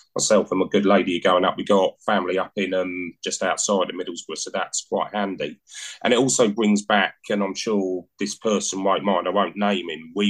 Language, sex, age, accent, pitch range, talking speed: English, male, 30-49, British, 95-105 Hz, 220 wpm